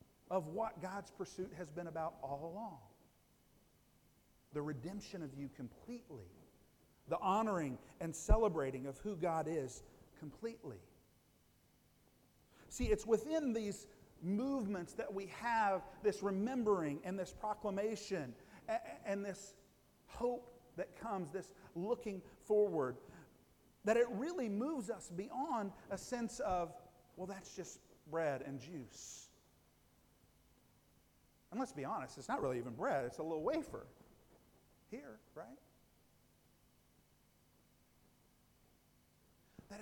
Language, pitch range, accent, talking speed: English, 140-215 Hz, American, 115 wpm